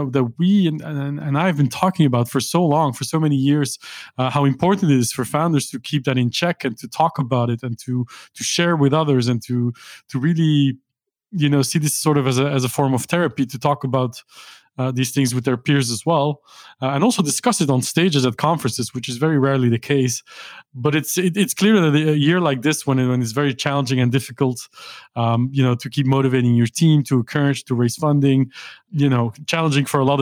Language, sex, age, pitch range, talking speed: English, male, 20-39, 125-150 Hz, 230 wpm